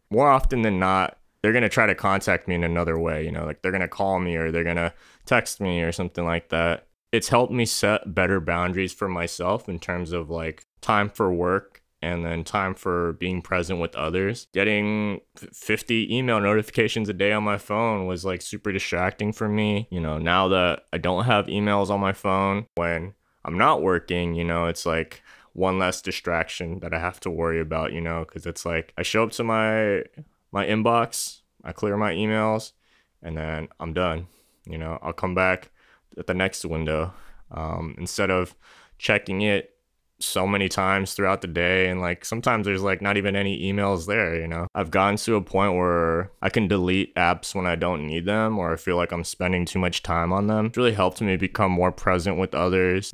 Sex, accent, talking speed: male, American, 210 wpm